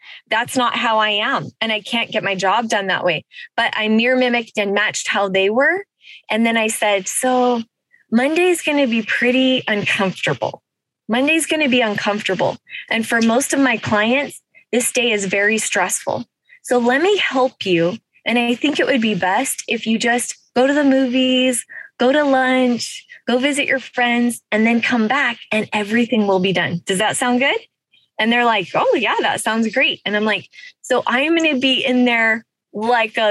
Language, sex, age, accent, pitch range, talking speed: English, female, 20-39, American, 210-270 Hz, 200 wpm